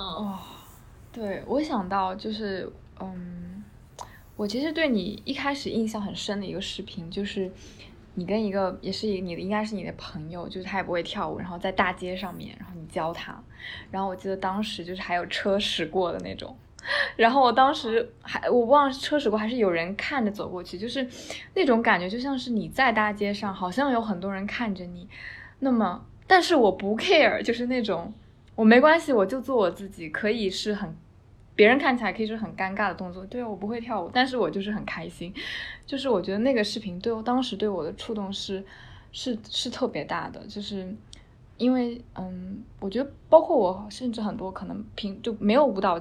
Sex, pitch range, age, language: female, 190-240 Hz, 20-39, Chinese